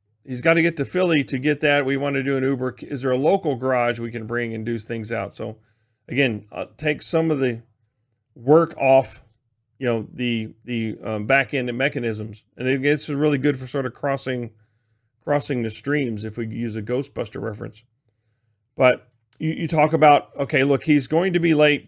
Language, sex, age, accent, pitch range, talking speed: English, male, 40-59, American, 115-145 Hz, 205 wpm